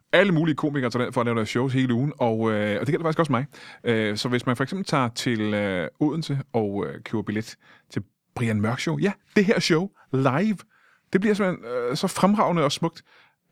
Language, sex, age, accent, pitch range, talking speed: Danish, male, 30-49, native, 115-160 Hz, 190 wpm